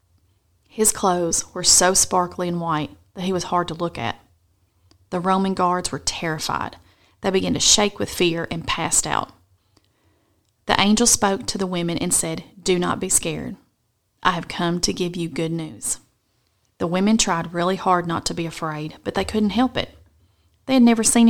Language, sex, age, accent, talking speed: English, female, 30-49, American, 185 wpm